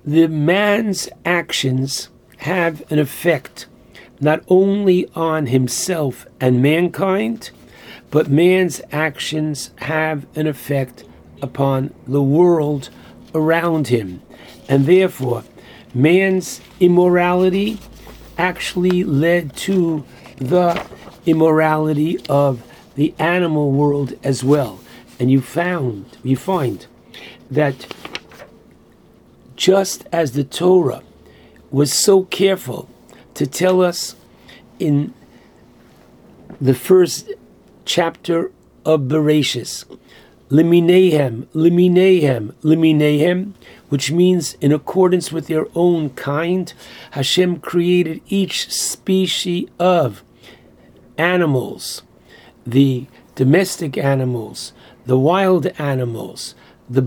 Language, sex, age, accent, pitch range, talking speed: English, male, 60-79, American, 135-180 Hz, 85 wpm